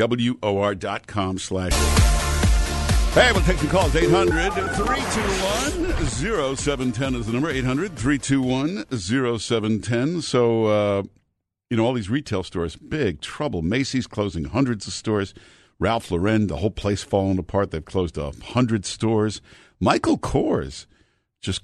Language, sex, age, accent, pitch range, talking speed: English, male, 60-79, American, 95-120 Hz, 115 wpm